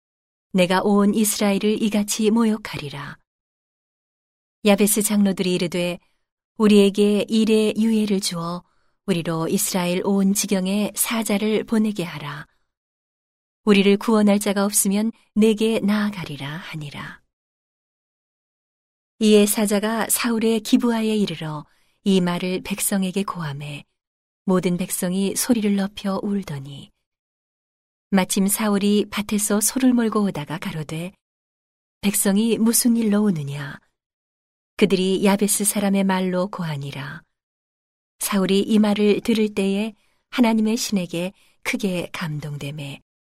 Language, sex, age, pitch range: Korean, female, 40-59, 175-215 Hz